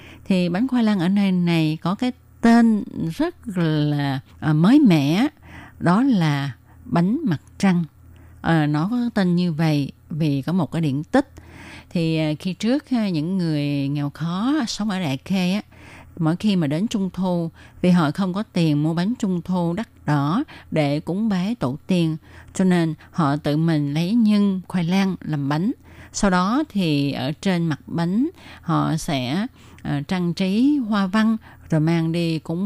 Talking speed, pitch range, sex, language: 165 wpm, 155-200 Hz, female, Vietnamese